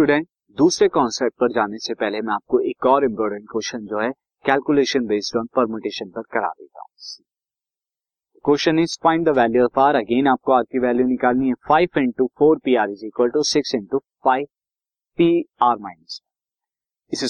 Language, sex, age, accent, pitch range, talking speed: Hindi, male, 50-69, native, 120-150 Hz, 140 wpm